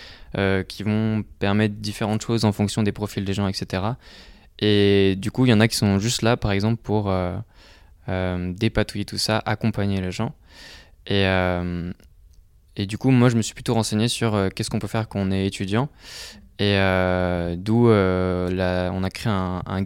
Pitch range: 95-110 Hz